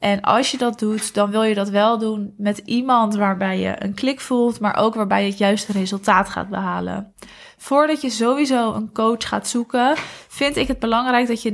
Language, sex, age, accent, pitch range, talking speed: Dutch, female, 20-39, Dutch, 210-240 Hz, 210 wpm